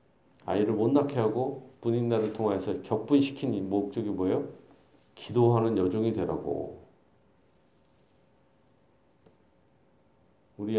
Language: Korean